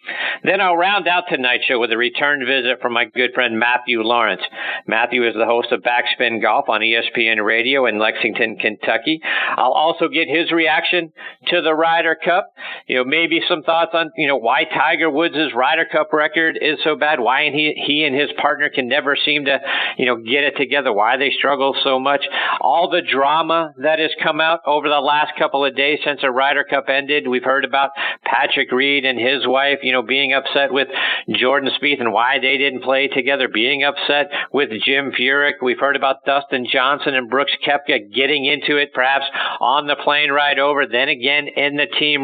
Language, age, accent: English, 50-69, American